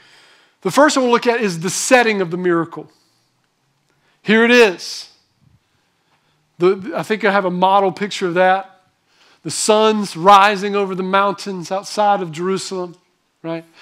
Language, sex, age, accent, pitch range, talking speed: English, male, 40-59, American, 190-235 Hz, 150 wpm